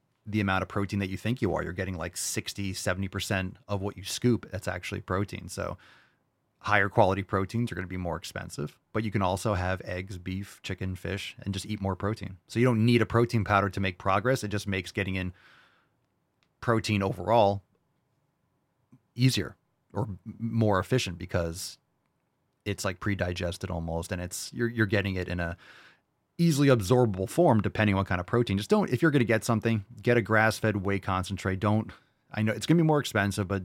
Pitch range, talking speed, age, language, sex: 95-120 Hz, 200 wpm, 30-49, English, male